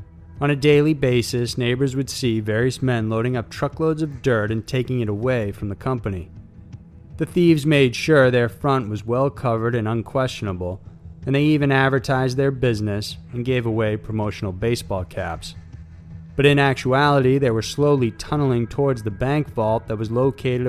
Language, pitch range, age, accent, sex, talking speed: English, 105-135 Hz, 30-49, American, male, 170 wpm